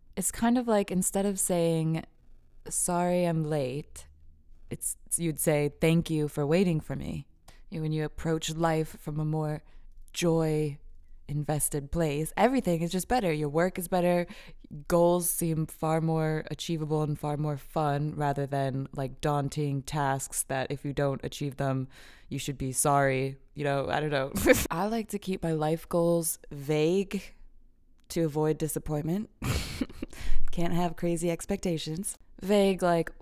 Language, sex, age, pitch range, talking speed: English, female, 20-39, 145-175 Hz, 150 wpm